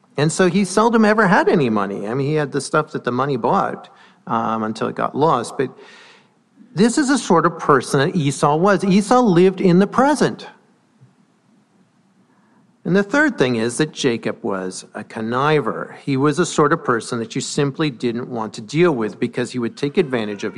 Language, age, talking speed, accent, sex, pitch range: English, 50-69, 200 wpm, American, male, 115-170 Hz